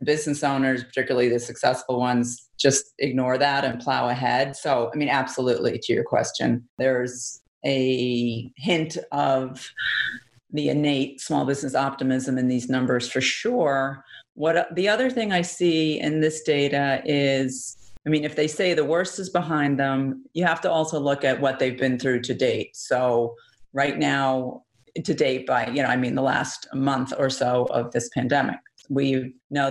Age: 40-59